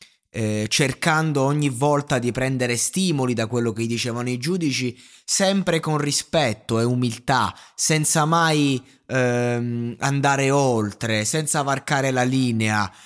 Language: Italian